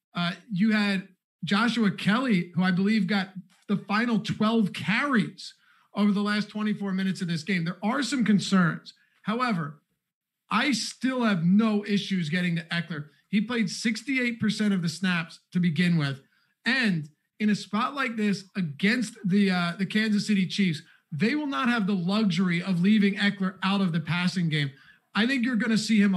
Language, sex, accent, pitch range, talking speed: English, male, American, 175-215 Hz, 175 wpm